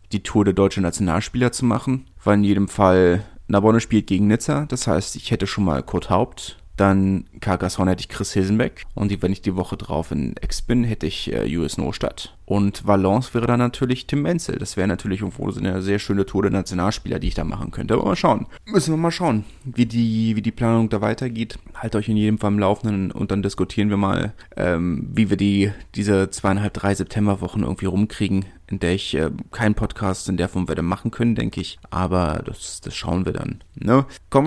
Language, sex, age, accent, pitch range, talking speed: German, male, 30-49, German, 100-125 Hz, 215 wpm